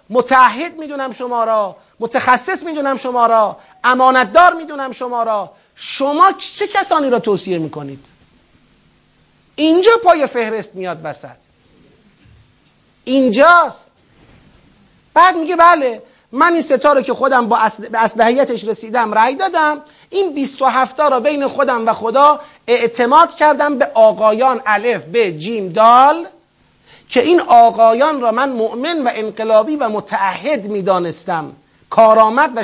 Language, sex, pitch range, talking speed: Persian, male, 225-310 Hz, 125 wpm